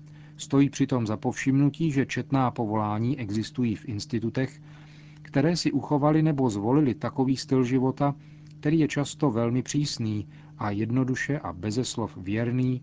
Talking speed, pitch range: 130 wpm, 110-140 Hz